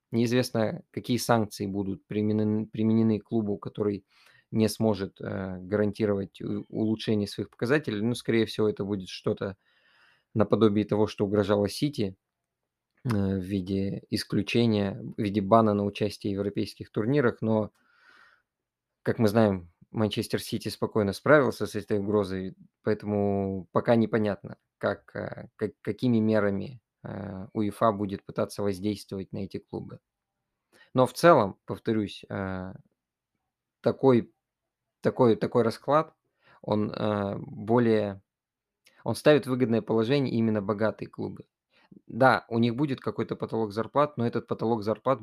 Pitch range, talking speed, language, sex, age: 105-115 Hz, 125 wpm, Russian, male, 20-39